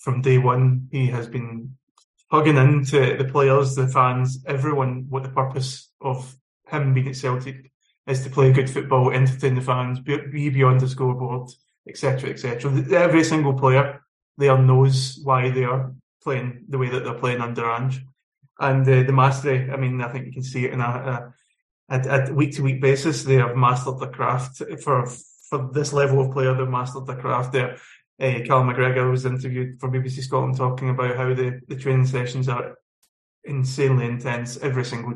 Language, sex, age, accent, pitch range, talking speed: English, male, 20-39, British, 130-135 Hz, 190 wpm